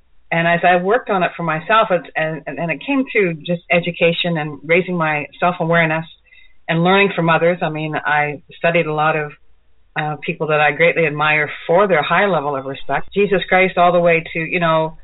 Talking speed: 205 wpm